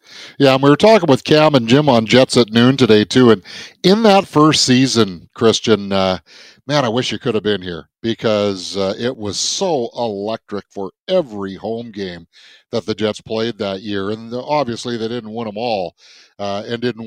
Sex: male